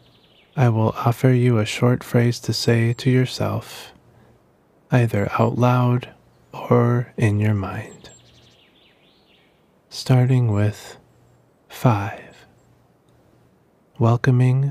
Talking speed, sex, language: 90 wpm, male, English